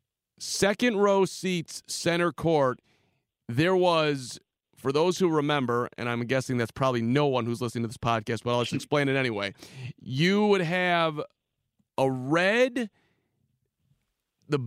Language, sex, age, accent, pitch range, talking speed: English, male, 40-59, American, 135-180 Hz, 145 wpm